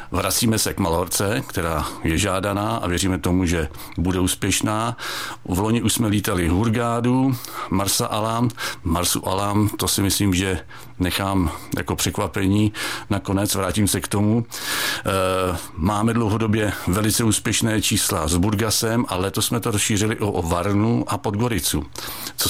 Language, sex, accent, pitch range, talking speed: Czech, male, native, 95-110 Hz, 140 wpm